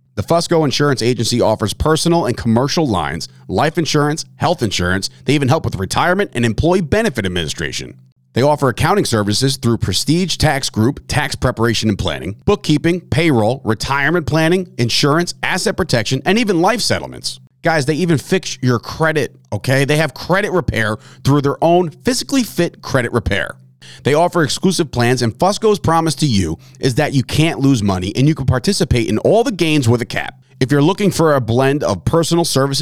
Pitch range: 115-160 Hz